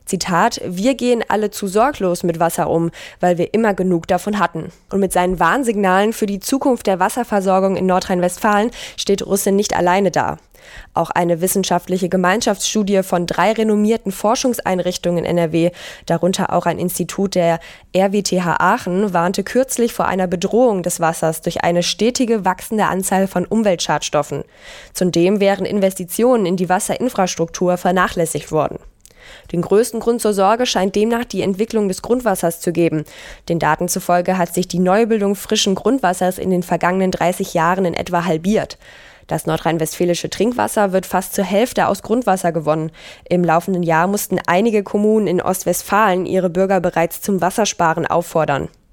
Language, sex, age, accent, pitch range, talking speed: German, female, 20-39, German, 175-205 Hz, 150 wpm